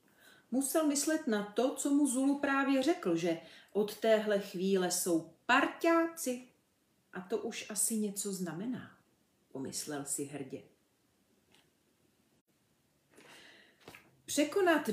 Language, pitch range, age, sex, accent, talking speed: Czech, 195-280 Hz, 40-59, female, native, 100 wpm